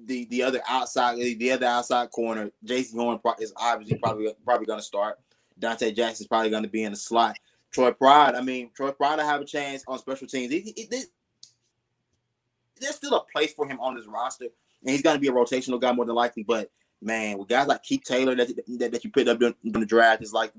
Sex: male